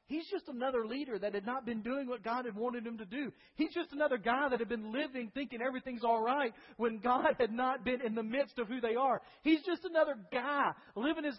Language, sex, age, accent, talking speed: English, male, 40-59, American, 240 wpm